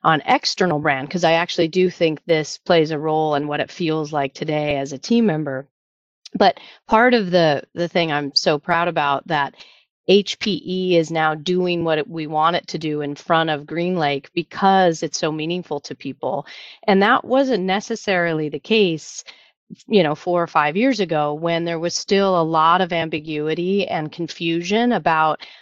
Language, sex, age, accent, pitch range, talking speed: English, female, 30-49, American, 155-185 Hz, 180 wpm